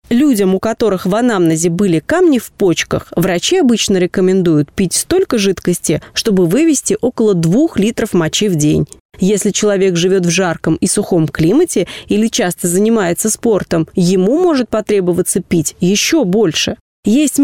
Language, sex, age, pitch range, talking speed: Russian, female, 30-49, 185-260 Hz, 145 wpm